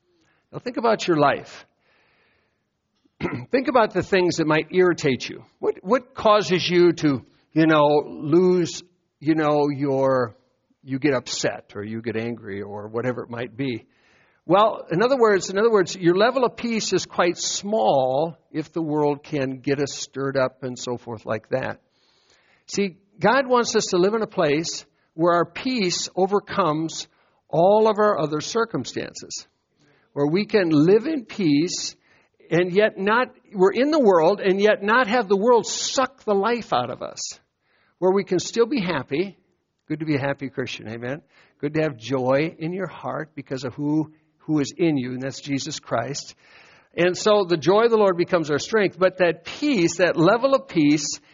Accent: American